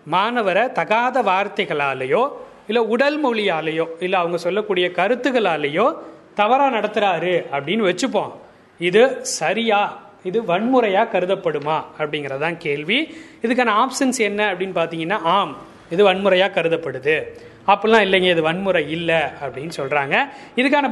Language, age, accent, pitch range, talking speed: Tamil, 30-49, native, 180-255 Hz, 110 wpm